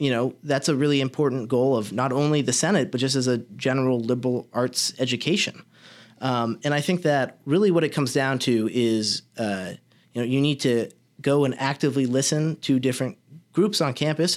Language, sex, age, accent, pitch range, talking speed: English, male, 30-49, American, 125-145 Hz, 195 wpm